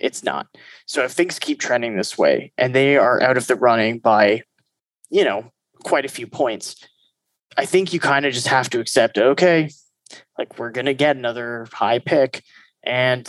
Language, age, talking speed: English, 20-39, 190 wpm